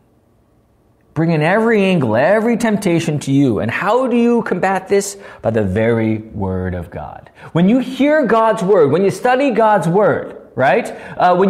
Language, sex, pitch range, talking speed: English, male, 150-230 Hz, 170 wpm